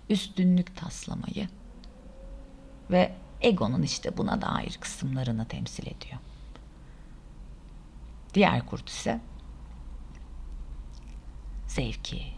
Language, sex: Turkish, female